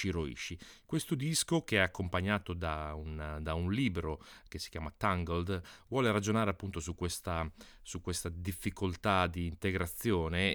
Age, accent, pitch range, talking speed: 30-49, native, 80-100 Hz, 130 wpm